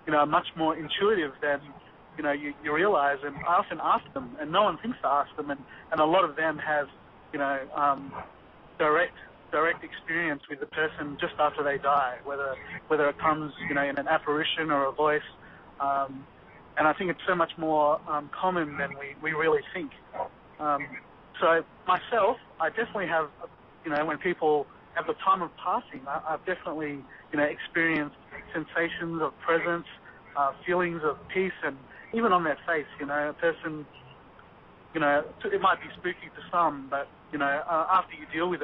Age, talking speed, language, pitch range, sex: 30-49, 190 wpm, English, 145-165 Hz, male